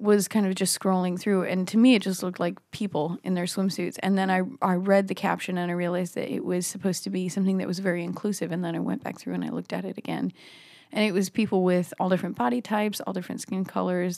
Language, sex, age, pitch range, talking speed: English, female, 20-39, 165-200 Hz, 265 wpm